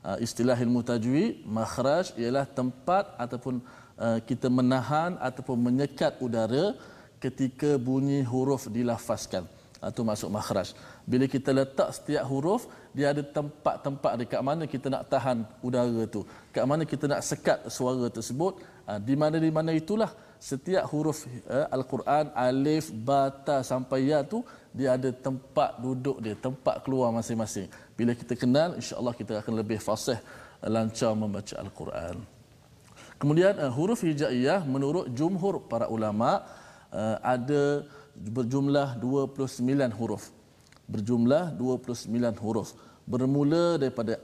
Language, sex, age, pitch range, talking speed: Malayalam, male, 20-39, 120-140 Hz, 120 wpm